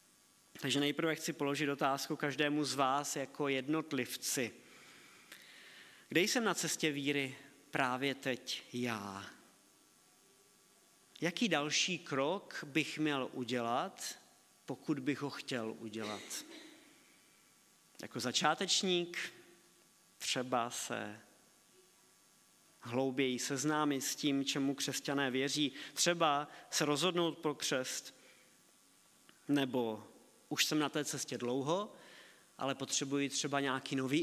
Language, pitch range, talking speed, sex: Czech, 130-155 Hz, 100 wpm, male